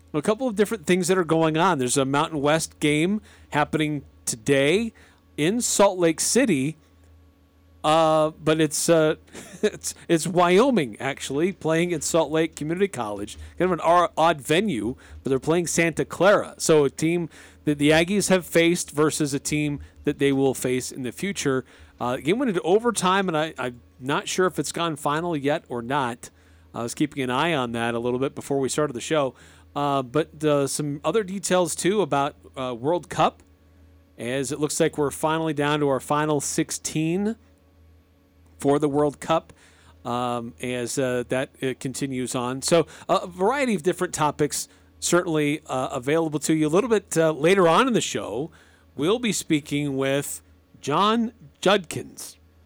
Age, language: 40-59, English